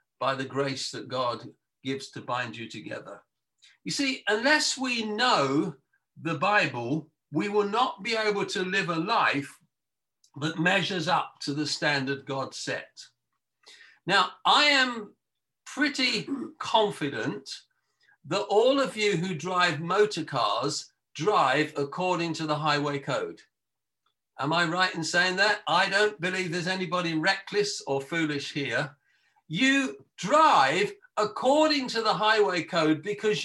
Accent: British